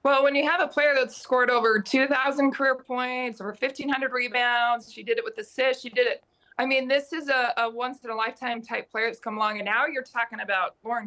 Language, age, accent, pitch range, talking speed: English, 20-39, American, 220-255 Hz, 230 wpm